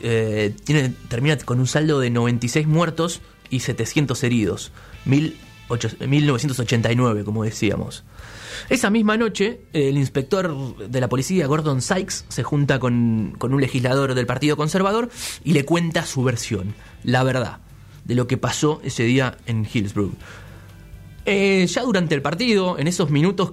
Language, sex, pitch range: Spanish, male, 120-165 Hz